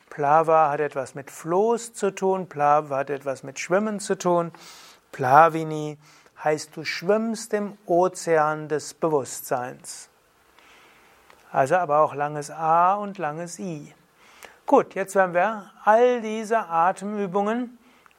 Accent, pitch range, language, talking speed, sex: German, 150-195 Hz, German, 120 wpm, male